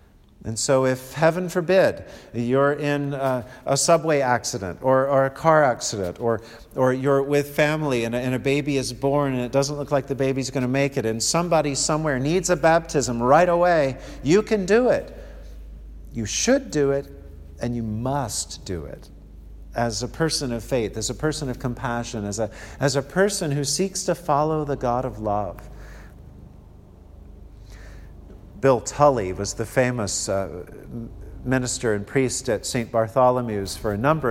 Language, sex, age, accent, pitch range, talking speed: English, male, 50-69, American, 110-145 Hz, 170 wpm